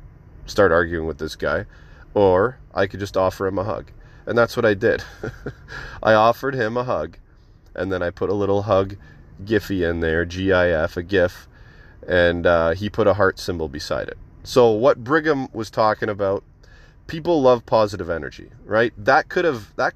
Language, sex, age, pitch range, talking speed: English, male, 30-49, 90-110 Hz, 180 wpm